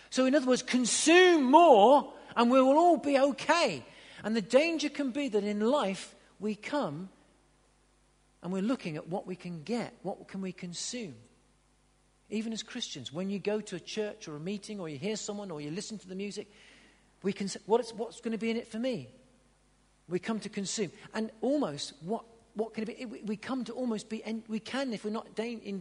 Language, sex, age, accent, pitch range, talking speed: English, male, 40-59, British, 180-230 Hz, 210 wpm